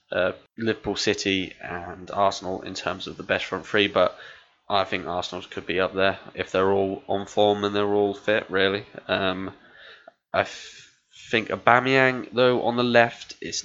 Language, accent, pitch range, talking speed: English, British, 95-110 Hz, 175 wpm